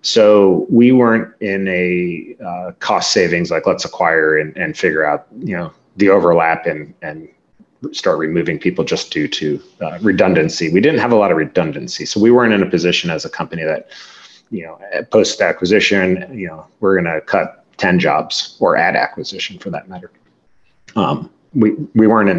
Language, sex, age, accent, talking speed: English, male, 30-49, American, 185 wpm